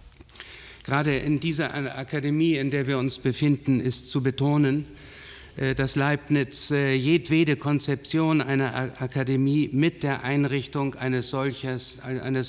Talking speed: 110 wpm